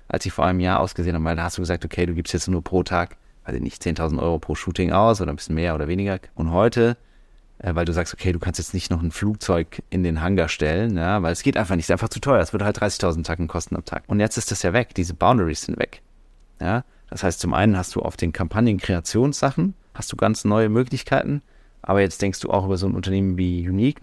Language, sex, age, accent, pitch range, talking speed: German, male, 30-49, German, 85-105 Hz, 260 wpm